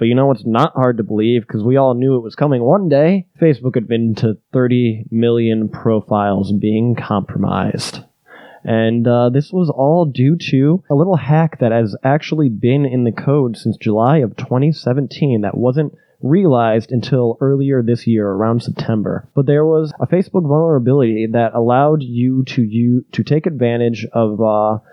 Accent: American